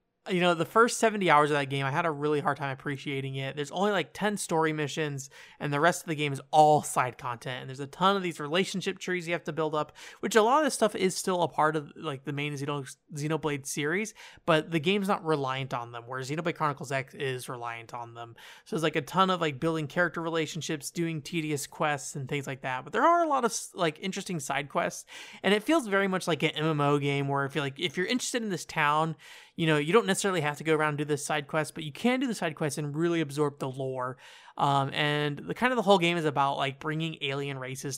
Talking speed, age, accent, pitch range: 260 wpm, 30-49, American, 135-170 Hz